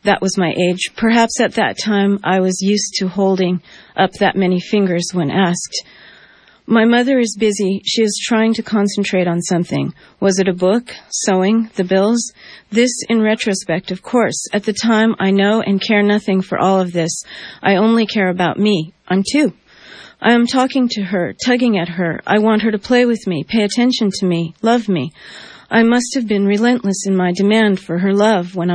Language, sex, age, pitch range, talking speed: English, female, 40-59, 185-220 Hz, 195 wpm